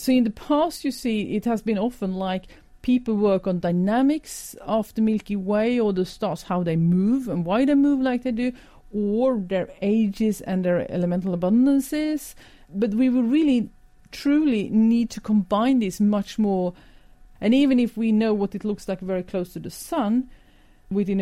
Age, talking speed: 40-59, 185 wpm